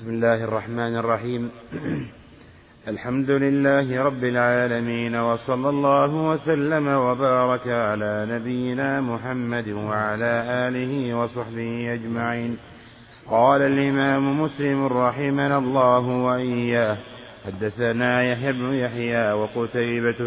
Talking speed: 85 wpm